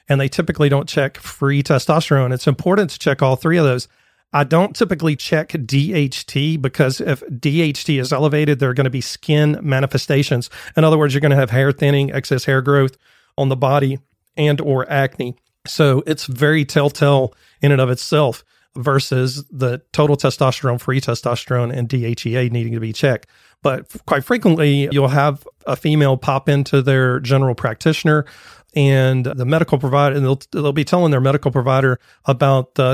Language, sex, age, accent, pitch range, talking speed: English, male, 40-59, American, 130-150 Hz, 175 wpm